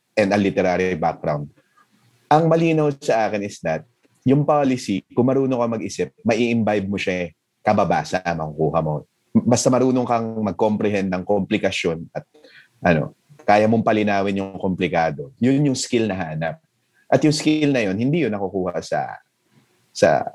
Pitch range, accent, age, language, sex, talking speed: 90-120 Hz, native, 30-49, Filipino, male, 145 wpm